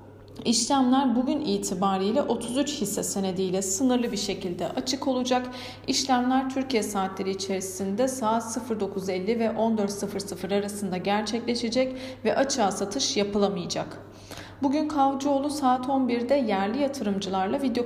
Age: 40-59